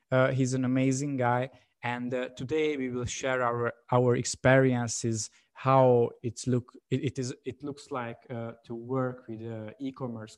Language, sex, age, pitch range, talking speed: English, male, 20-39, 120-140 Hz, 175 wpm